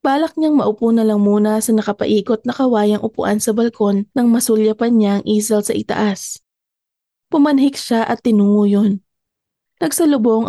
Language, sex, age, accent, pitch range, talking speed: Filipino, female, 20-39, native, 220-255 Hz, 150 wpm